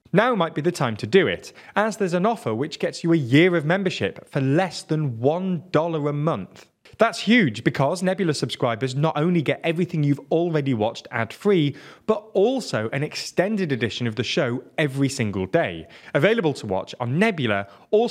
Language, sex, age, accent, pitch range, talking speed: English, male, 30-49, British, 125-185 Hz, 180 wpm